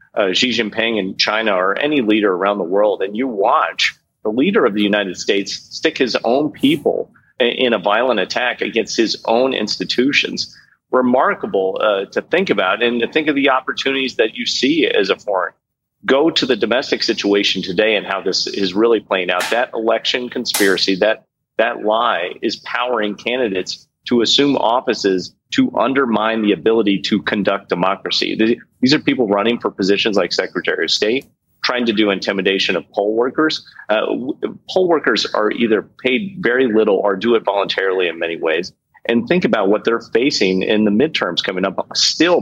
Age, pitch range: 40-59, 100-130 Hz